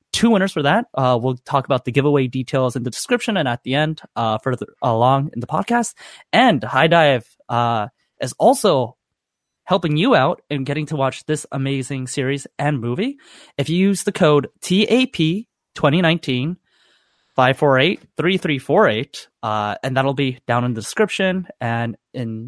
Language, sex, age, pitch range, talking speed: English, male, 20-39, 125-165 Hz, 155 wpm